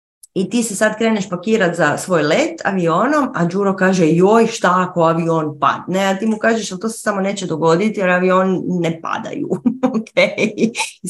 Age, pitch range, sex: 30-49, 155-225 Hz, female